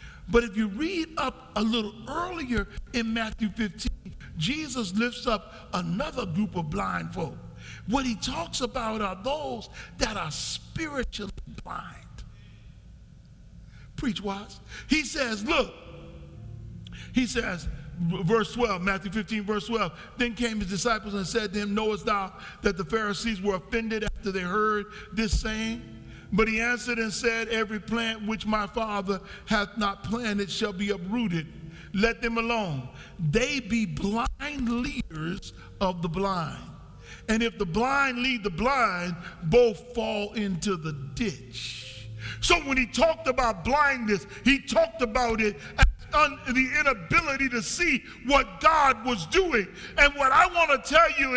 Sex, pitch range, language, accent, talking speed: male, 200-255 Hz, English, American, 145 wpm